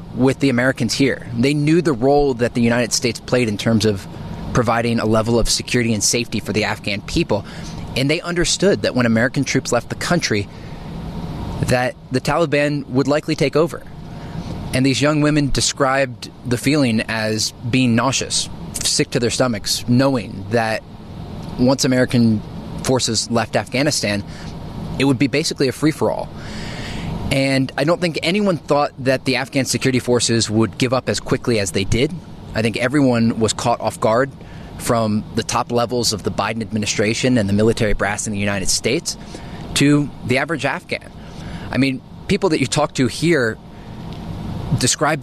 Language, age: English, 20-39